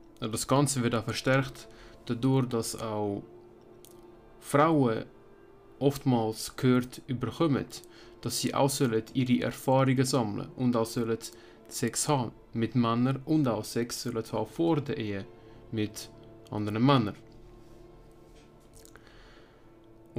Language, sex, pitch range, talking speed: German, male, 110-130 Hz, 105 wpm